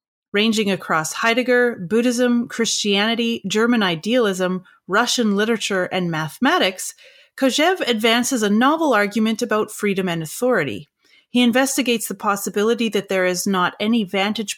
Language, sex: English, female